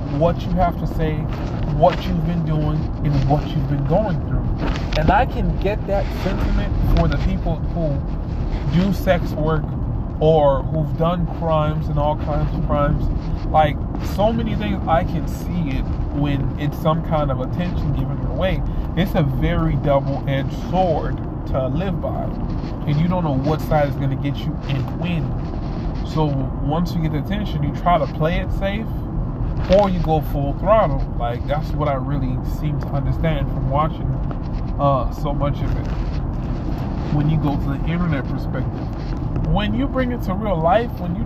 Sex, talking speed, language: male, 175 wpm, English